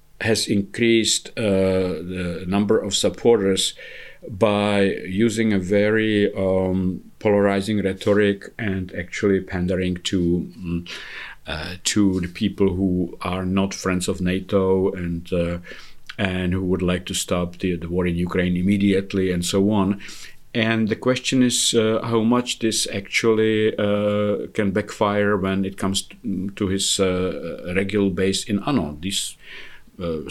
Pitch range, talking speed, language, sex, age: 90-105 Hz, 135 wpm, Polish, male, 50-69